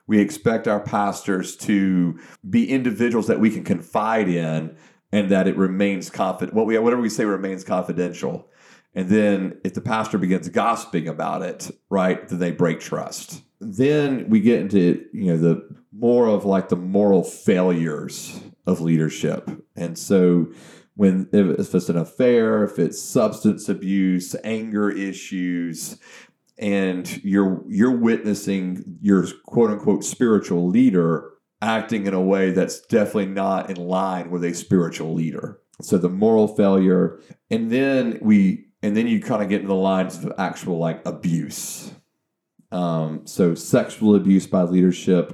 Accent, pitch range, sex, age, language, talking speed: American, 90-110 Hz, male, 40-59, English, 150 wpm